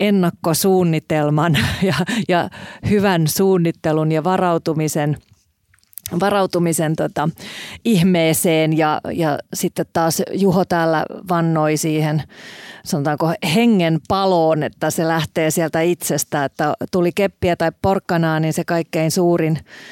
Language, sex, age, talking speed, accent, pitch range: Finnish, female, 30-49, 100 wpm, native, 155-180 Hz